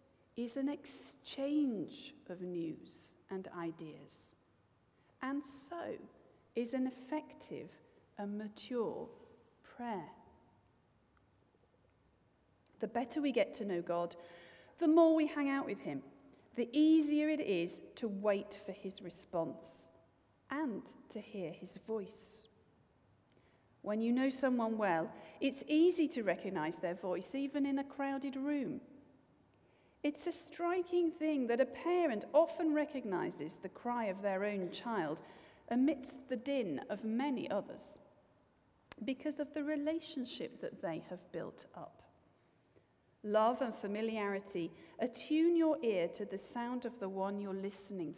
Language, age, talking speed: English, 40-59, 130 wpm